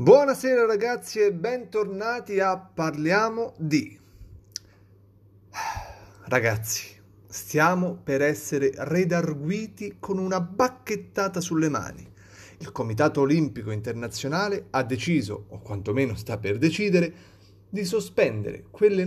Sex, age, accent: male, 30-49, native